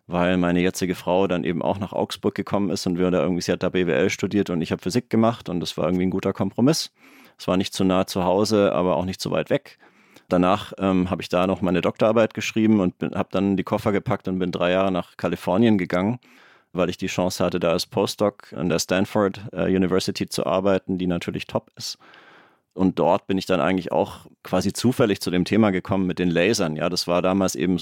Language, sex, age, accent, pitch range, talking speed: German, male, 30-49, German, 90-100 Hz, 230 wpm